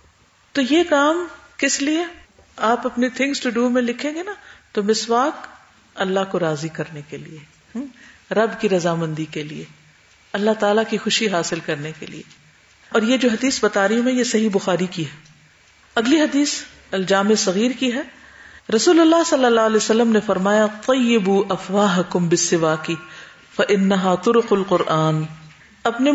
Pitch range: 190-260 Hz